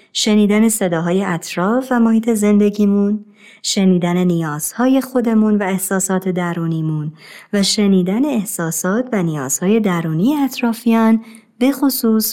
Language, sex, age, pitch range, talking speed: Persian, male, 30-49, 175-240 Hz, 100 wpm